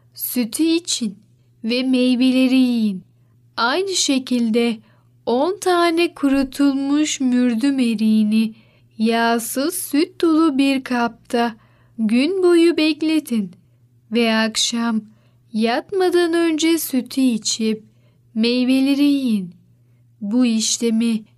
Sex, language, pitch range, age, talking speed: female, Turkish, 215-290 Hz, 10-29, 85 wpm